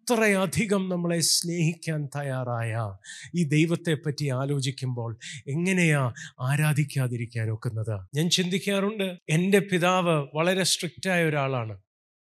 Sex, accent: male, native